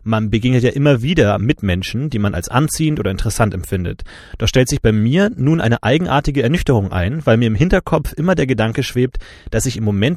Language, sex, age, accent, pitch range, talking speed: German, male, 30-49, German, 105-140 Hz, 210 wpm